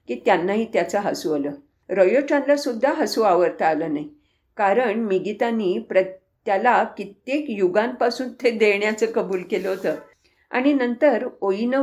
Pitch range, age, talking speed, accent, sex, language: 190-260 Hz, 50-69, 90 wpm, Indian, female, English